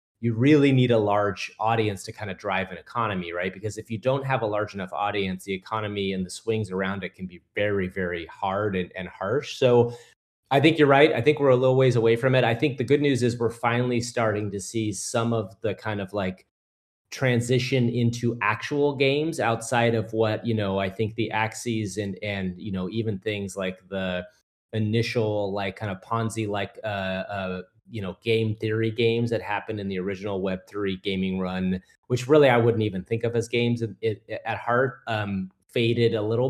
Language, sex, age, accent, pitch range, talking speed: English, male, 30-49, American, 95-120 Hz, 205 wpm